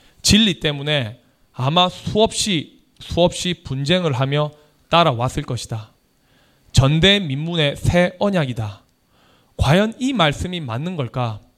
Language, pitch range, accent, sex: Korean, 130-175 Hz, native, male